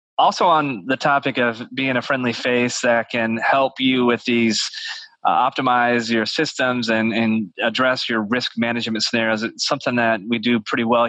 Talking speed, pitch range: 180 wpm, 110-125 Hz